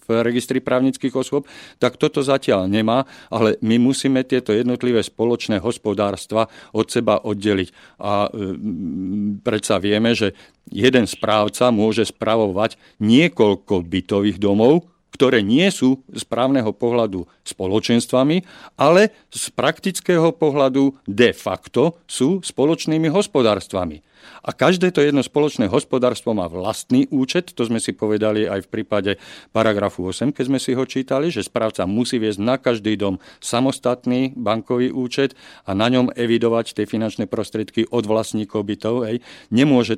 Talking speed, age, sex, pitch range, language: 135 wpm, 50-69, male, 105-130 Hz, Slovak